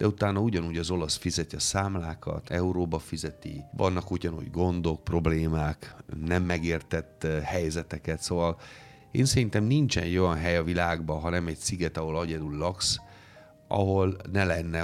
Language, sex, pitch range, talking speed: Hungarian, male, 80-95 Hz, 140 wpm